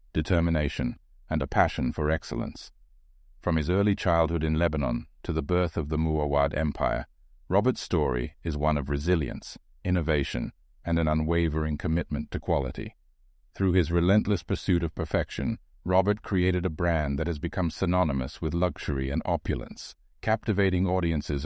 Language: English